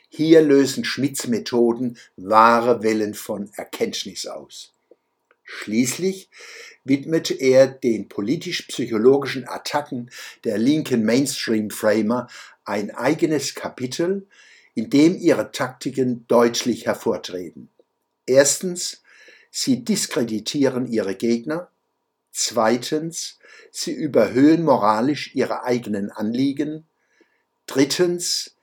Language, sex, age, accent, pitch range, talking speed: German, male, 60-79, German, 120-190 Hz, 85 wpm